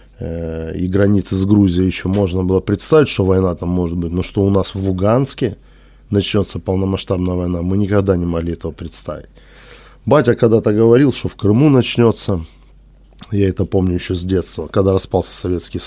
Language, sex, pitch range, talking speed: Russian, male, 90-105 Hz, 165 wpm